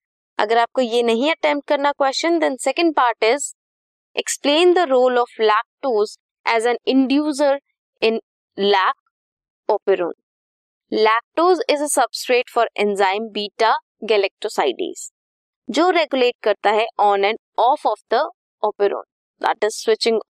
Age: 20-39